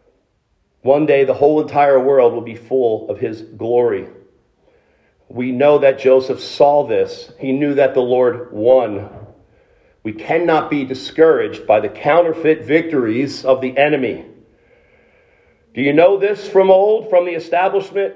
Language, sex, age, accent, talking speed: English, male, 40-59, American, 145 wpm